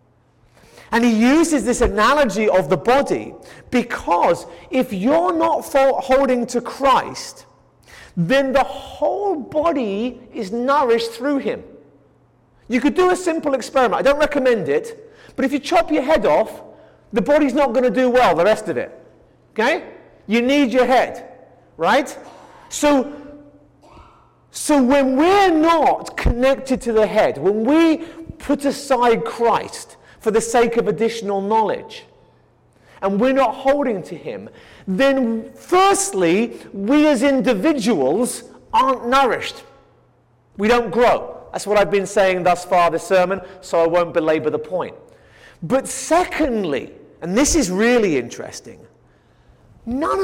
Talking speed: 140 wpm